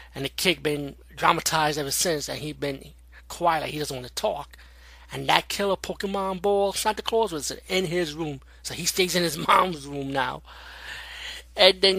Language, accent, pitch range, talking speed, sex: English, American, 130-185 Hz, 205 wpm, male